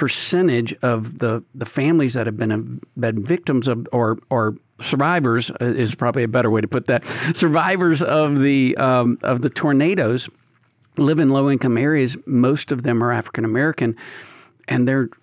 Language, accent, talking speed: English, American, 165 wpm